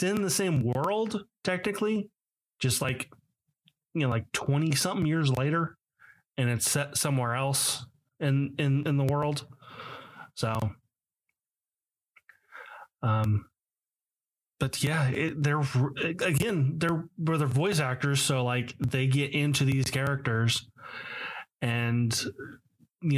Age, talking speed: 20-39, 115 wpm